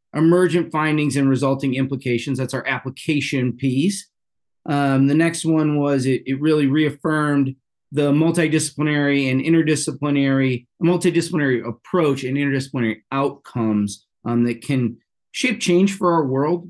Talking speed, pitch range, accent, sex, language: 125 wpm, 125-150 Hz, American, male, English